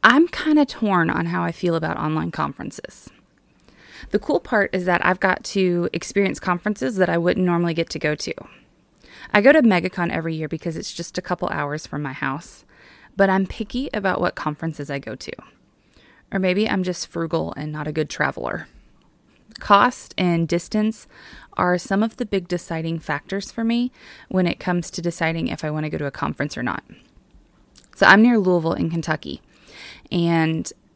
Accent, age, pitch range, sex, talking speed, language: American, 20-39, 165-205 Hz, female, 185 wpm, English